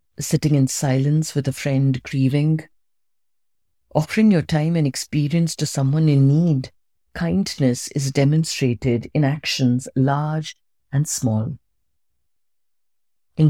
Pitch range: 125-155 Hz